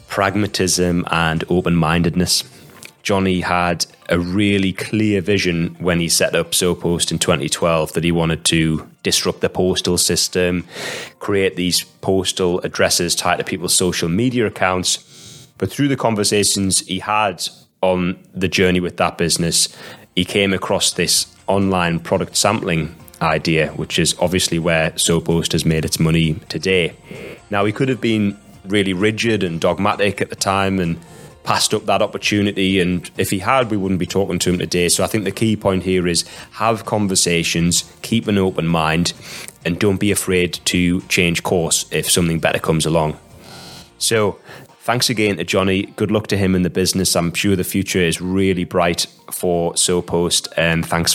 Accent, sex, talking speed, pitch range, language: British, male, 165 wpm, 85-100 Hz, English